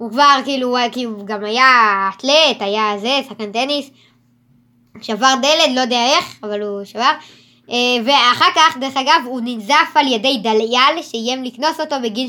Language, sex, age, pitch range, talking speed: Hebrew, male, 20-39, 220-280 Hz, 150 wpm